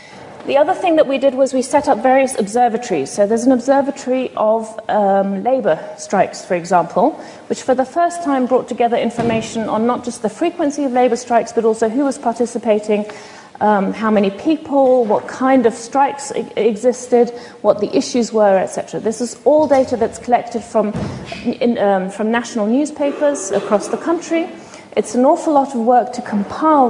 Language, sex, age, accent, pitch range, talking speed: English, female, 40-59, British, 210-260 Hz, 175 wpm